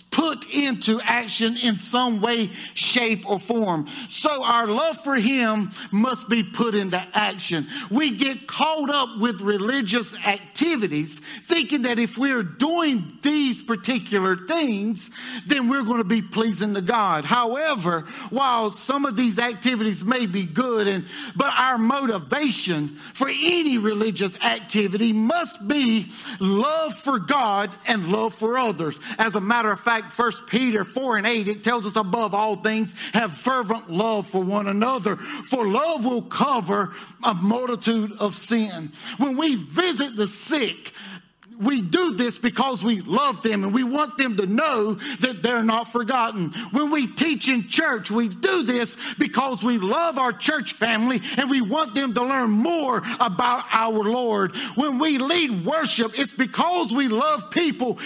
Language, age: English, 50-69